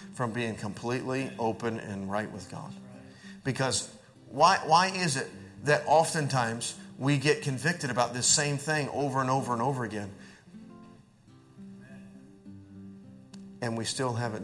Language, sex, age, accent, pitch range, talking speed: English, male, 40-59, American, 115-165 Hz, 135 wpm